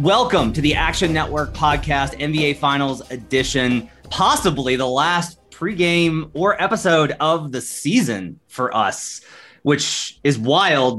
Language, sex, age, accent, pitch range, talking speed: English, male, 30-49, American, 120-160 Hz, 125 wpm